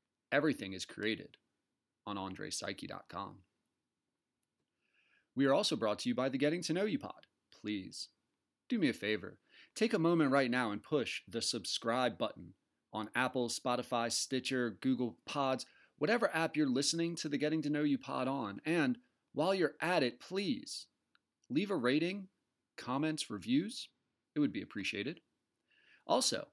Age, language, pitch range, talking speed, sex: 30-49, English, 130-170 Hz, 150 wpm, male